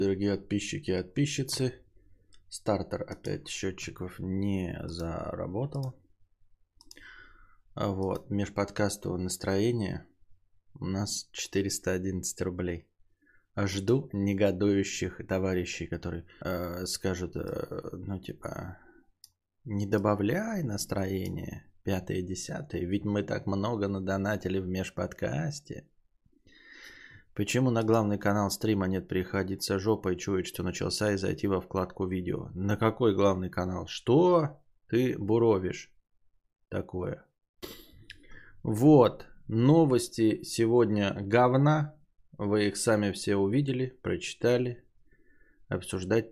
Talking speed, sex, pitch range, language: 95 wpm, male, 95-115 Hz, Bulgarian